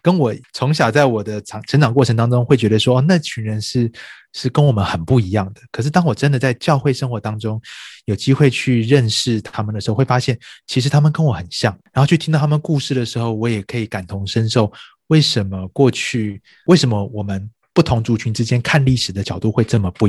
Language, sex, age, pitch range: Chinese, male, 30-49, 105-135 Hz